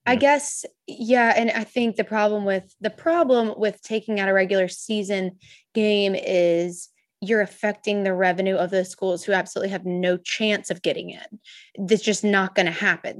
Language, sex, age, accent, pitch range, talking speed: English, female, 20-39, American, 180-215 Hz, 180 wpm